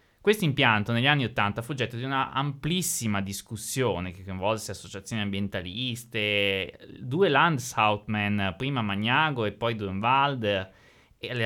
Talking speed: 120 wpm